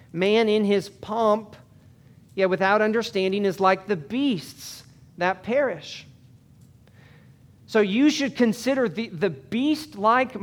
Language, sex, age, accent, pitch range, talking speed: English, male, 40-59, American, 130-170 Hz, 115 wpm